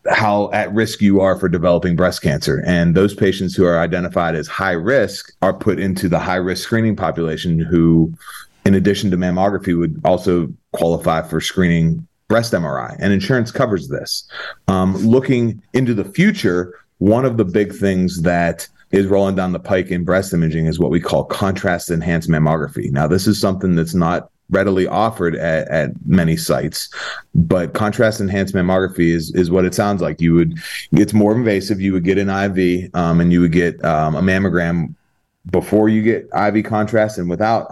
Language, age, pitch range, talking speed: English, 30-49, 85-100 Hz, 180 wpm